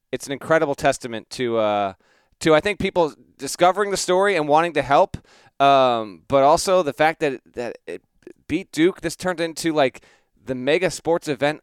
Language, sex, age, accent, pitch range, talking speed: English, male, 30-49, American, 130-170 Hz, 185 wpm